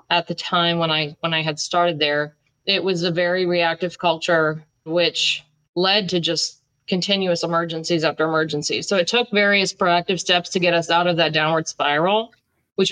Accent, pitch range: American, 165-195 Hz